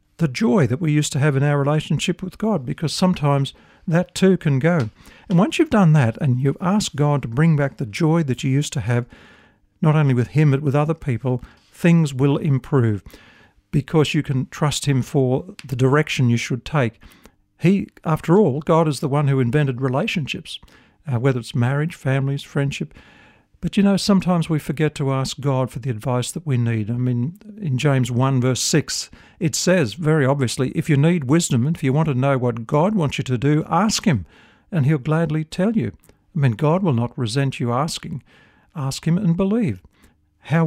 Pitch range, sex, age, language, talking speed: 130-170 Hz, male, 50-69, English, 200 wpm